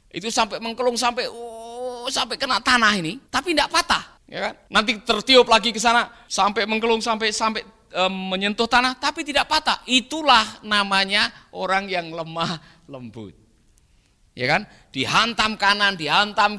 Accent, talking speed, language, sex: native, 145 wpm, Indonesian, male